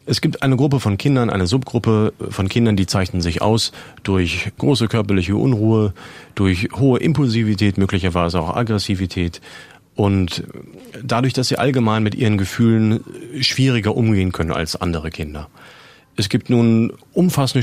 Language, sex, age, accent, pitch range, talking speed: German, male, 40-59, German, 95-120 Hz, 145 wpm